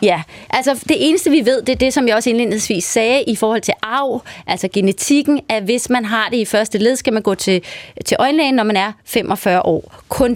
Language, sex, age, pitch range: Danish, female, 30-49, 215-270 Hz